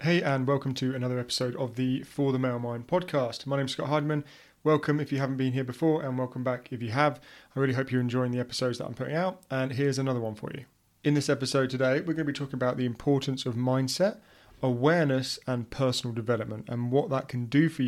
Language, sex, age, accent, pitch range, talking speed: English, male, 30-49, British, 120-145 Hz, 240 wpm